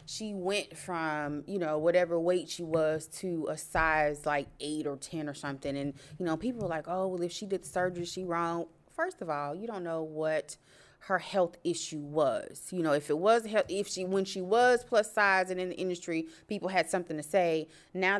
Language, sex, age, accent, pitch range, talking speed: English, female, 30-49, American, 160-215 Hz, 215 wpm